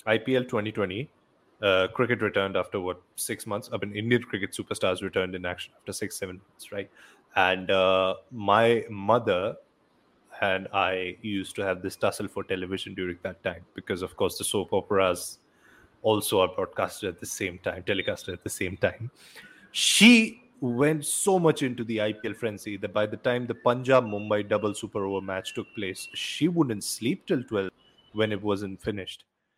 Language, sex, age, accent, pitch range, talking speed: English, male, 30-49, Indian, 100-130 Hz, 170 wpm